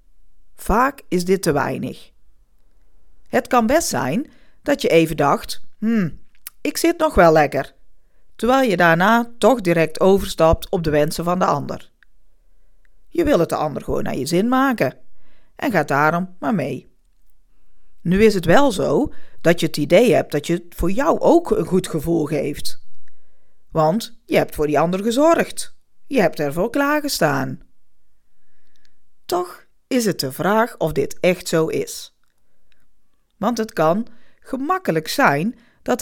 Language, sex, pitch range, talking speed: Dutch, female, 155-240 Hz, 155 wpm